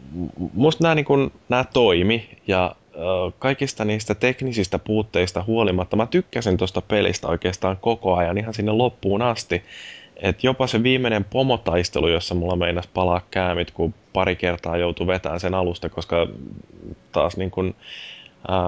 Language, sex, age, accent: Finnish, male, 20-39, native